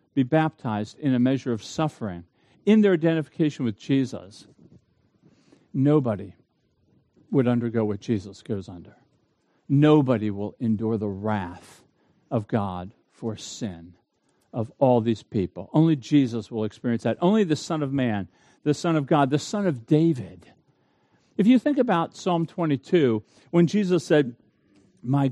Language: English